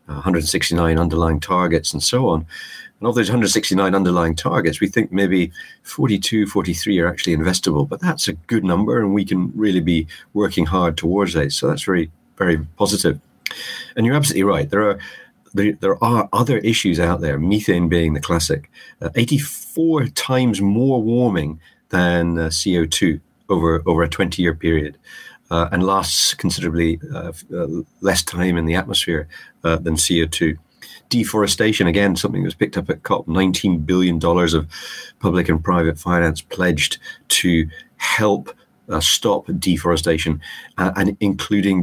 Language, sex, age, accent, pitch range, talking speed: English, male, 40-59, British, 80-100 Hz, 160 wpm